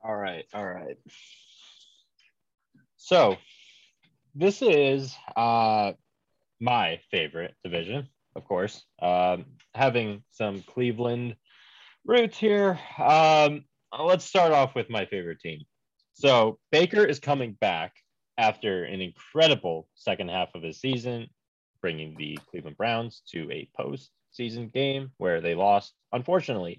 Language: English